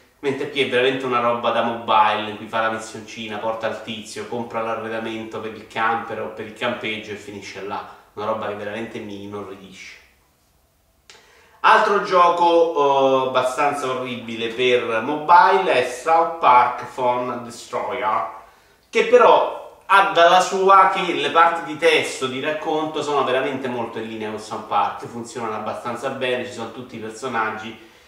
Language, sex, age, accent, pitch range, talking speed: Italian, male, 30-49, native, 110-140 Hz, 160 wpm